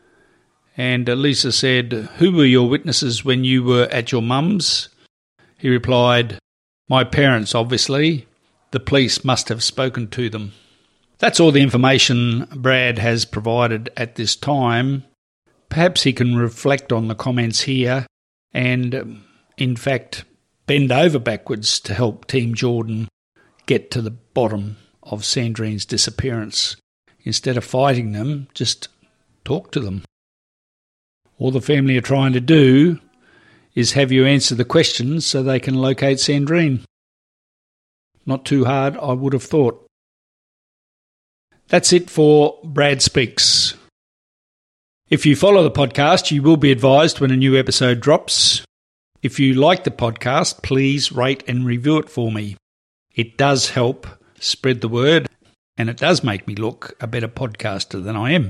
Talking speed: 145 wpm